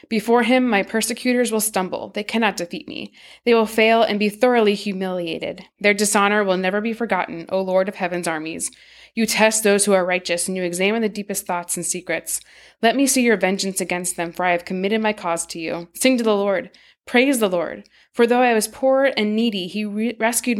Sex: female